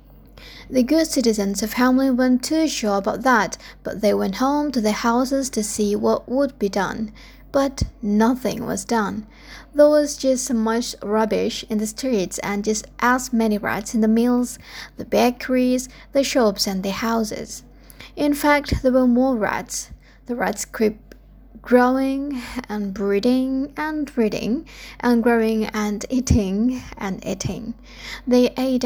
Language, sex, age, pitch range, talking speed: English, female, 20-39, 215-260 Hz, 150 wpm